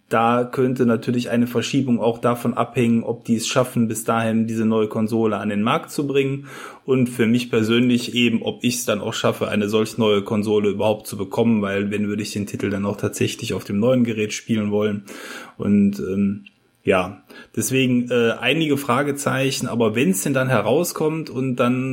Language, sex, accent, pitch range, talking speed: German, male, German, 105-120 Hz, 190 wpm